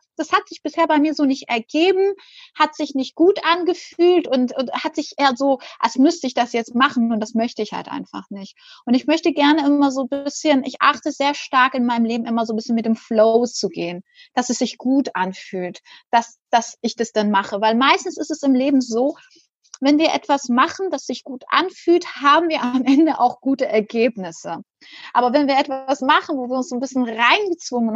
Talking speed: 215 wpm